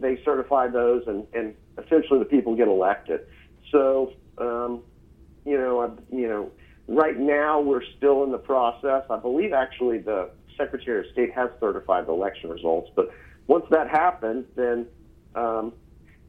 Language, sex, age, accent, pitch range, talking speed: English, male, 50-69, American, 110-155 Hz, 150 wpm